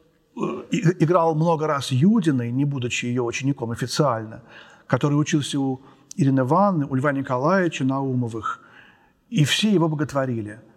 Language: Russian